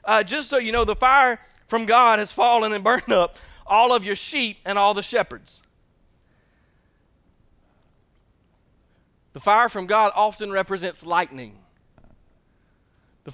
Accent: American